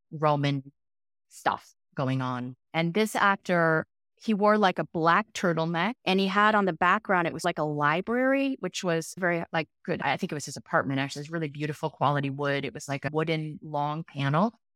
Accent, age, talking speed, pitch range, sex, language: American, 30-49, 200 wpm, 160-215 Hz, female, English